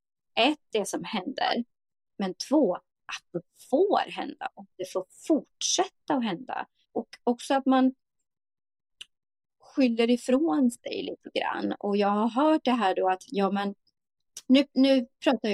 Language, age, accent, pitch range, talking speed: Swedish, 30-49, native, 185-260 Hz, 145 wpm